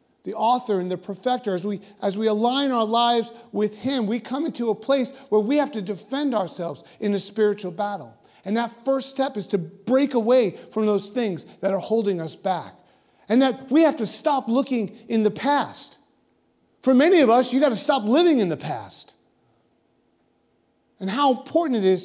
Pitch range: 155-230 Hz